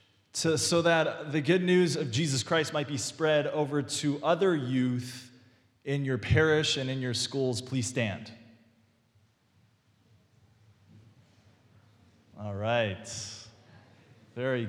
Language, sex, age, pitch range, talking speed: English, male, 20-39, 115-180 Hz, 110 wpm